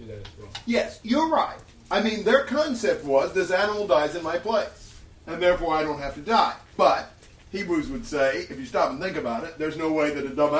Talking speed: 215 wpm